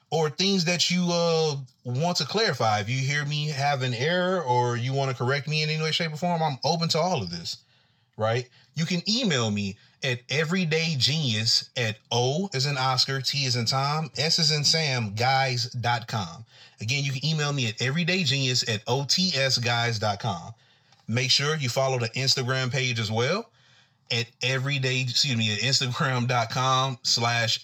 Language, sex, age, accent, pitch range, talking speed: English, male, 30-49, American, 120-150 Hz, 170 wpm